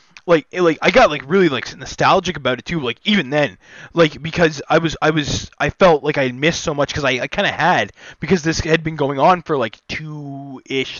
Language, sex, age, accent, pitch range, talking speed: English, male, 20-39, American, 125-165 Hz, 240 wpm